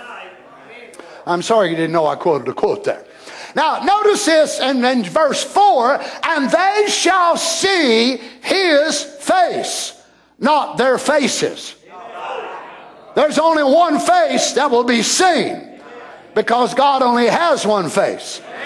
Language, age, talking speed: English, 50-69, 130 wpm